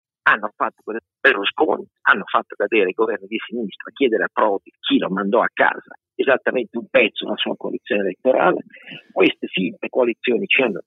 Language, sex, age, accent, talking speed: Italian, male, 50-69, native, 170 wpm